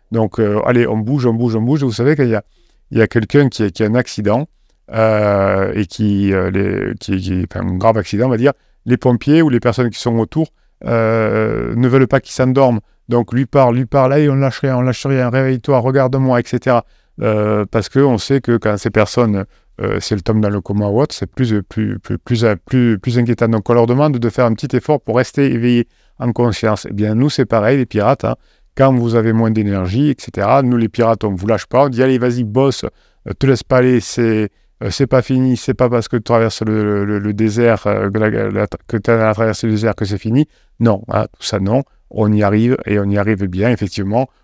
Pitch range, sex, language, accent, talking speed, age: 105-125 Hz, male, French, French, 245 wpm, 40-59